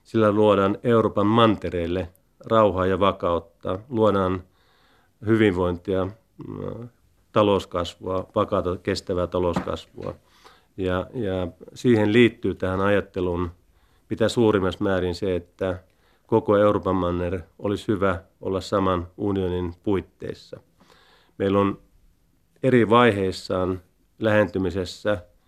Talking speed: 90 wpm